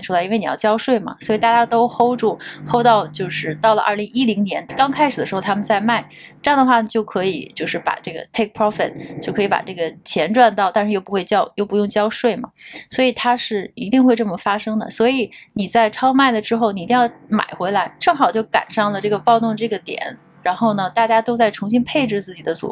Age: 20-39